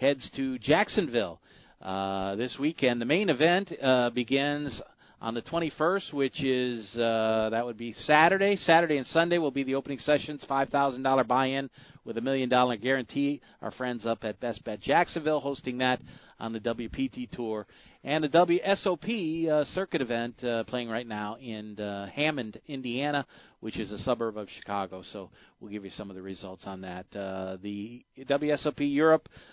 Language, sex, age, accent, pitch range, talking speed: English, male, 40-59, American, 110-145 Hz, 170 wpm